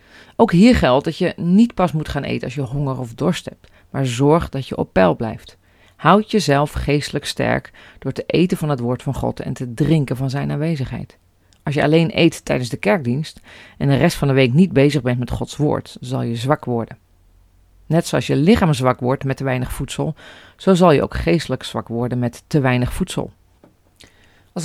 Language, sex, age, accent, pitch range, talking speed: Dutch, female, 40-59, Dutch, 125-160 Hz, 210 wpm